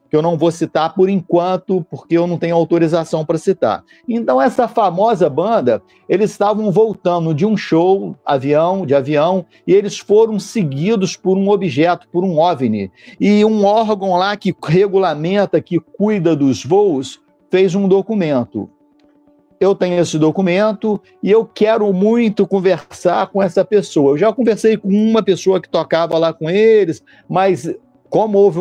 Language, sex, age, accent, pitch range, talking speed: Portuguese, male, 50-69, Brazilian, 160-200 Hz, 160 wpm